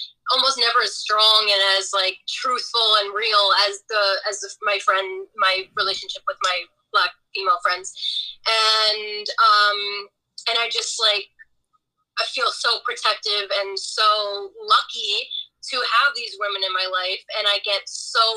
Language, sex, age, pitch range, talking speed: English, female, 20-39, 195-310 Hz, 150 wpm